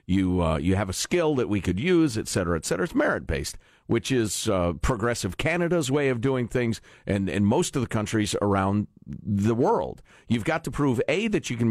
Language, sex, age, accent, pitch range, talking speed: English, male, 50-69, American, 105-160 Hz, 215 wpm